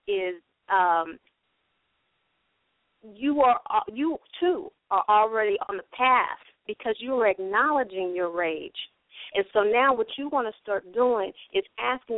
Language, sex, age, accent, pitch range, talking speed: English, female, 40-59, American, 190-250 Hz, 140 wpm